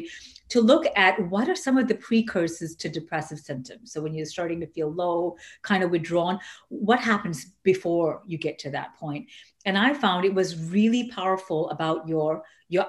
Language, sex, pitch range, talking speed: English, female, 160-205 Hz, 185 wpm